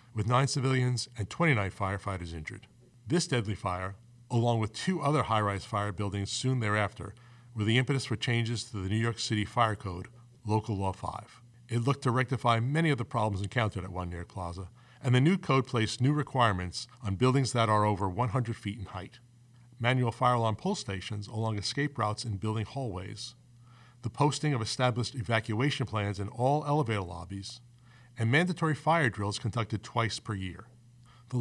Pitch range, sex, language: 105-125 Hz, male, English